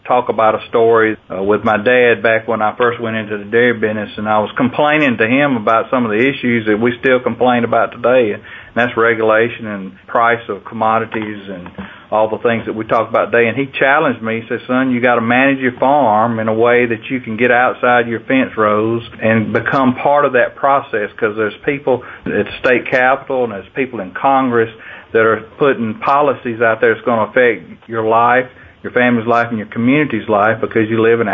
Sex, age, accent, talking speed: male, 40-59, American, 220 wpm